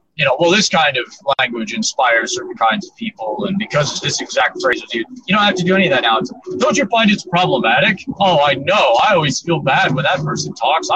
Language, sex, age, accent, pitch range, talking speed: English, male, 30-49, American, 150-210 Hz, 240 wpm